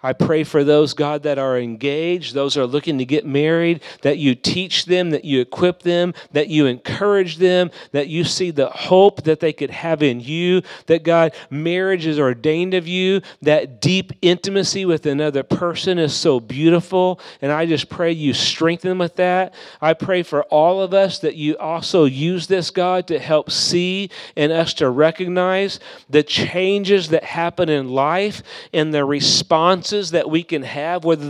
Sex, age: male, 40-59